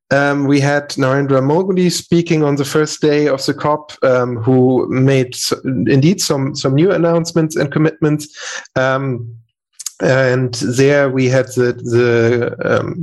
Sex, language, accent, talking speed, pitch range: male, English, German, 145 wpm, 125-150 Hz